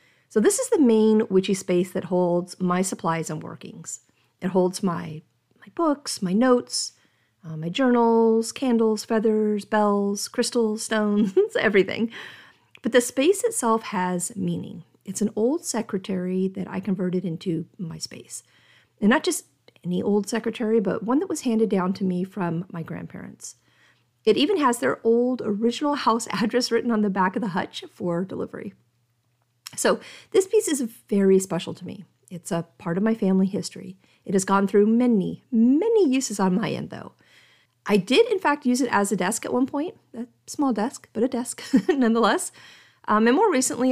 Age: 40-59